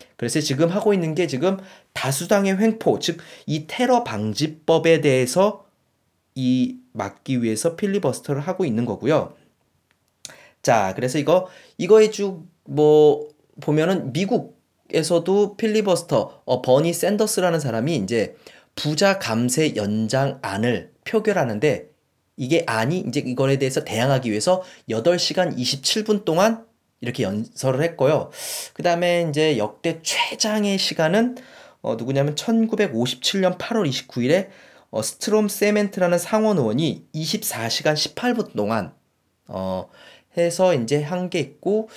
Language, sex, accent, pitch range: Korean, male, native, 125-185 Hz